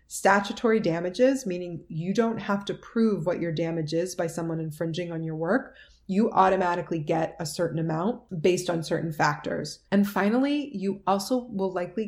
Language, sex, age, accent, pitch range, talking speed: English, female, 30-49, American, 165-200 Hz, 170 wpm